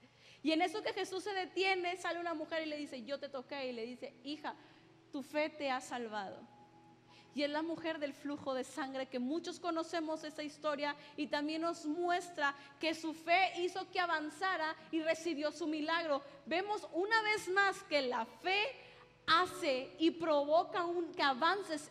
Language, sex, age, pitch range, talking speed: Spanish, female, 30-49, 290-350 Hz, 180 wpm